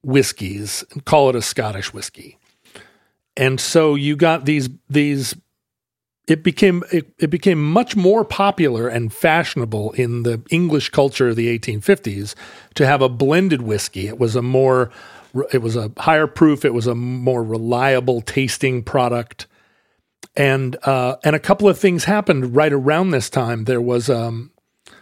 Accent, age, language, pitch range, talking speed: American, 40-59, English, 120-150 Hz, 160 wpm